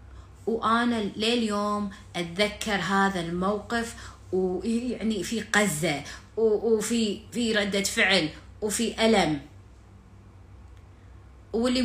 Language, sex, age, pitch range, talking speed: Arabic, female, 30-49, 185-255 Hz, 80 wpm